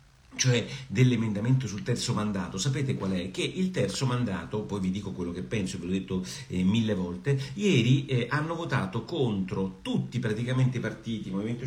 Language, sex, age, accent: Italian, male, 50-69, native